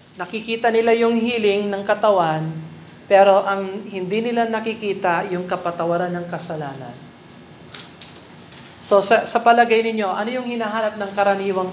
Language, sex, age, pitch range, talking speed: Filipino, male, 40-59, 175-220 Hz, 130 wpm